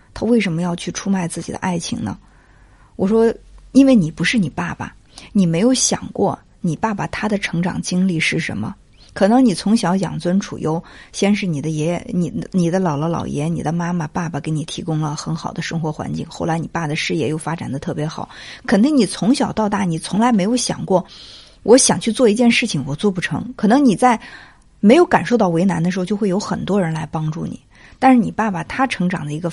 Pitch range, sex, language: 165-210 Hz, female, Chinese